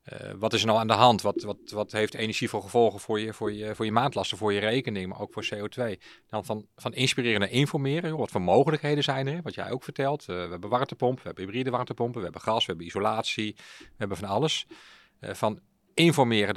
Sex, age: male, 40-59